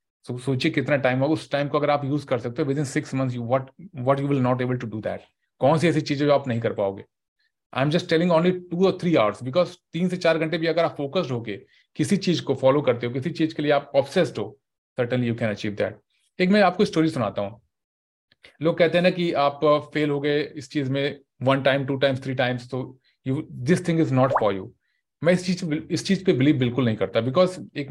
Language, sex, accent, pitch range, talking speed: Hindi, male, native, 130-170 Hz, 250 wpm